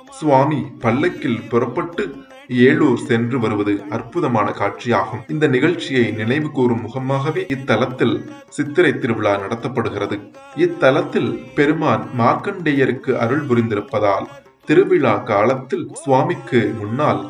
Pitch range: 115-130 Hz